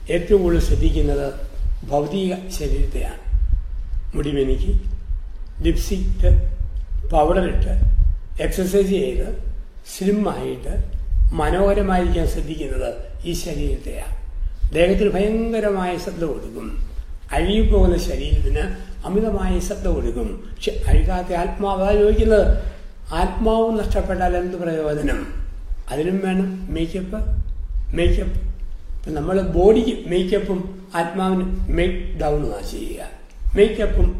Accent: native